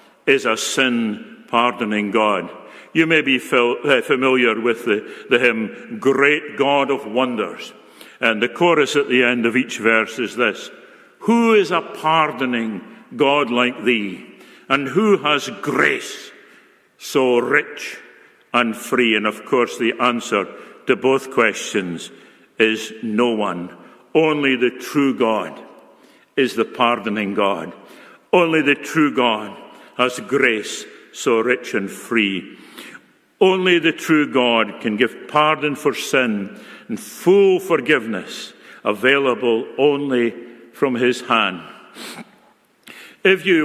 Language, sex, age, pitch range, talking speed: English, male, 60-79, 125-170 Hz, 125 wpm